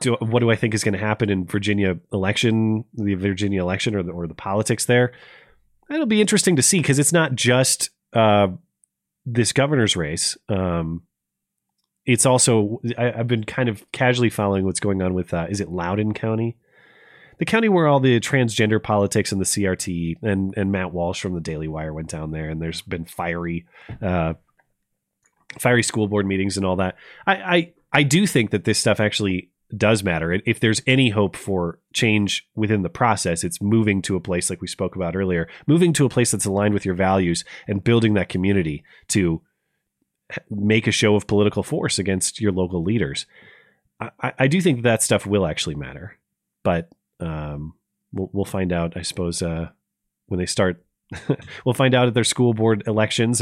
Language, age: English, 30-49